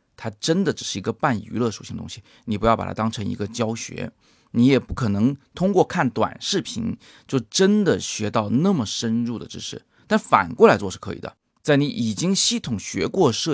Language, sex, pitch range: Chinese, male, 105-135 Hz